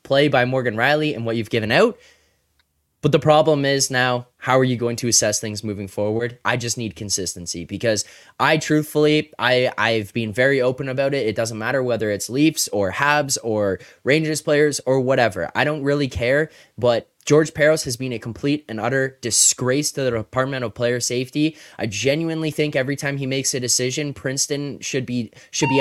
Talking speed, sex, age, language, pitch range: 195 wpm, male, 20-39, English, 115-145 Hz